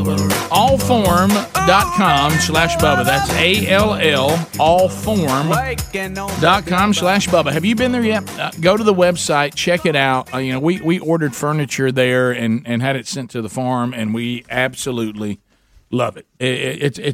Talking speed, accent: 155 wpm, American